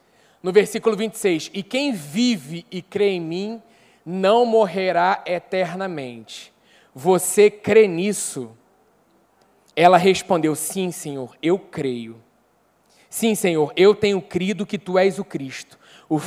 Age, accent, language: 20-39, Brazilian, Portuguese